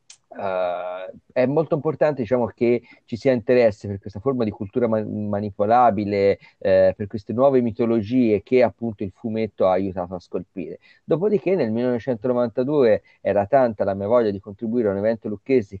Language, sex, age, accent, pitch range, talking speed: Italian, male, 30-49, native, 100-130 Hz, 165 wpm